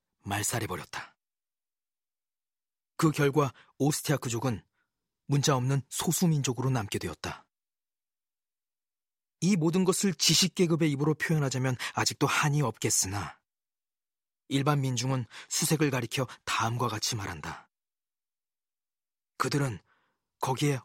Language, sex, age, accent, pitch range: Korean, male, 40-59, native, 120-155 Hz